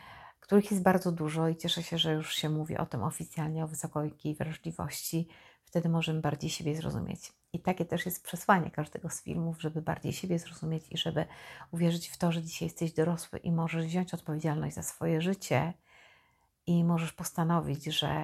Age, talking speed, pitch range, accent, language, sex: 50-69, 180 wpm, 155-180 Hz, native, Polish, female